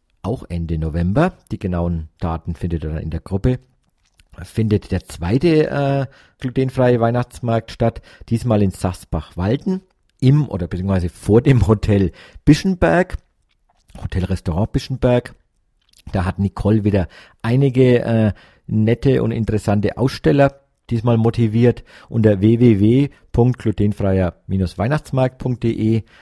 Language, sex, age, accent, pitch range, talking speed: German, male, 50-69, German, 95-125 Hz, 105 wpm